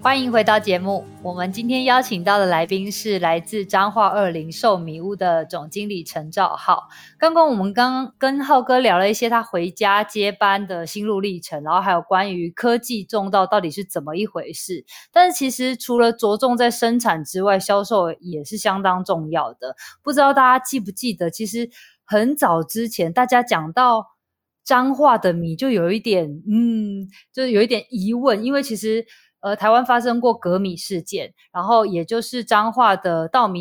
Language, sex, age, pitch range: Chinese, female, 20-39, 180-240 Hz